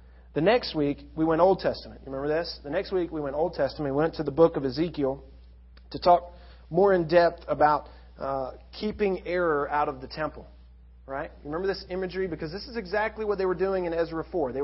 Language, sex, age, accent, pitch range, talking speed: English, male, 40-59, American, 120-175 Hz, 215 wpm